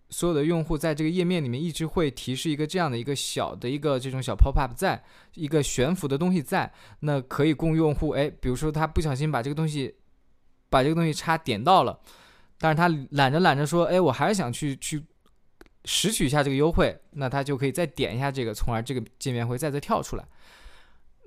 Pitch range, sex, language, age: 115-155 Hz, male, Chinese, 20-39